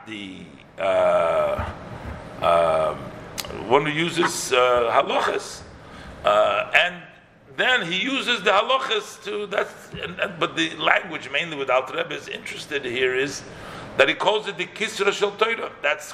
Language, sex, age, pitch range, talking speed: English, male, 50-69, 175-240 Hz, 140 wpm